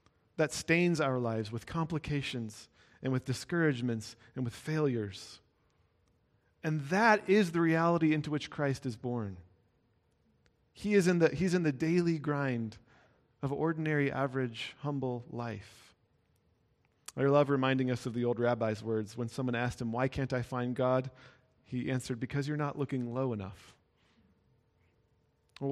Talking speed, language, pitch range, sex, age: 145 wpm, English, 120-155 Hz, male, 40-59